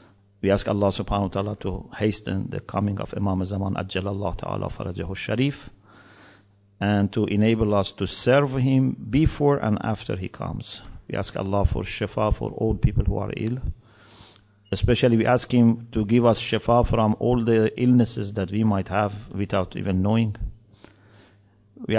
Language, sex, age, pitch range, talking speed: English, male, 50-69, 100-120 Hz, 165 wpm